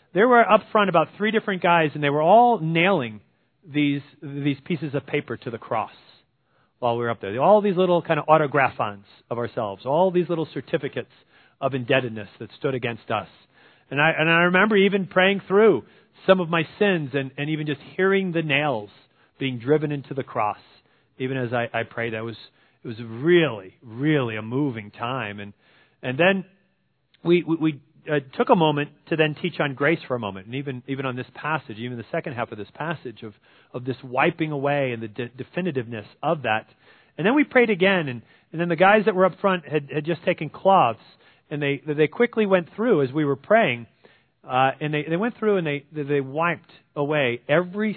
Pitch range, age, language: 130-175 Hz, 40-59, English